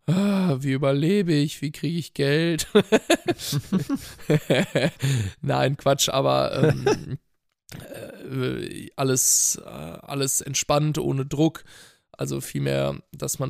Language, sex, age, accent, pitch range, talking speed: German, male, 20-39, German, 130-150 Hz, 95 wpm